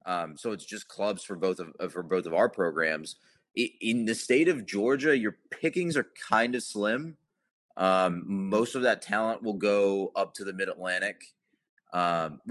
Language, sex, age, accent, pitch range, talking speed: English, male, 30-49, American, 90-115 Hz, 175 wpm